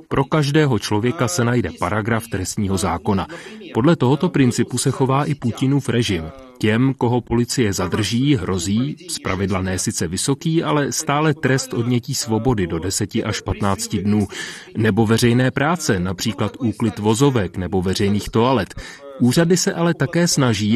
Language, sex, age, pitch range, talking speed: Czech, male, 30-49, 105-135 Hz, 140 wpm